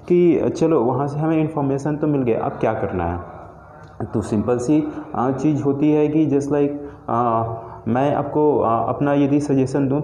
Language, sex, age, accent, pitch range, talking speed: Hindi, male, 30-49, native, 125-150 Hz, 180 wpm